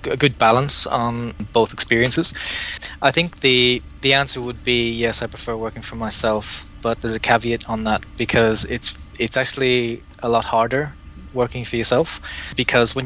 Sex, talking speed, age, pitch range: male, 170 wpm, 20-39, 110-125 Hz